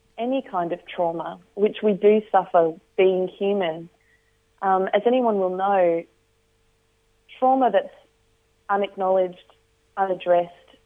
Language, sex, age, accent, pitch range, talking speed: English, female, 30-49, Australian, 175-225 Hz, 105 wpm